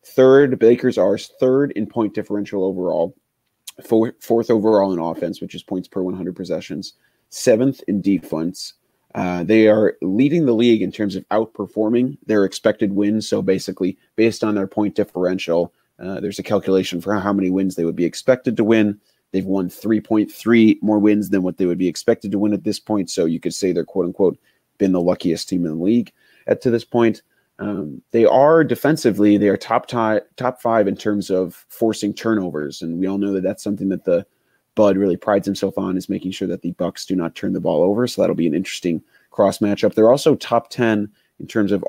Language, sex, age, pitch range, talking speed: English, male, 30-49, 95-110 Hz, 205 wpm